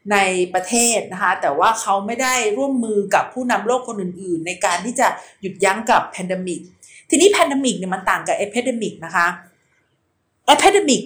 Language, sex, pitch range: Thai, female, 190-245 Hz